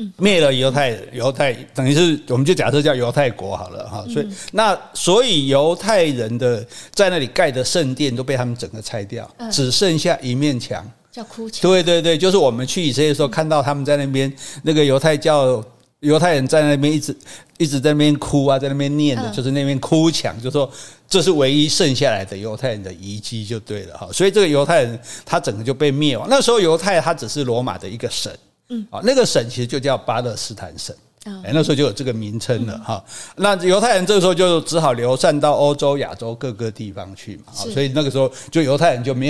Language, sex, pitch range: Chinese, male, 125-175 Hz